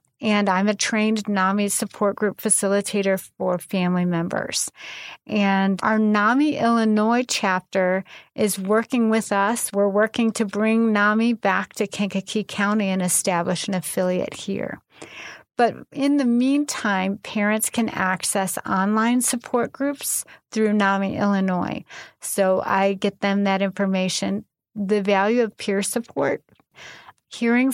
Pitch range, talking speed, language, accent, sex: 195-230 Hz, 130 wpm, English, American, female